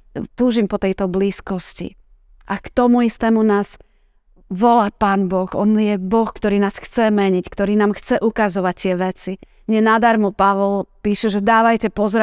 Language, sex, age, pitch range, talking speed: Slovak, female, 30-49, 190-215 Hz, 150 wpm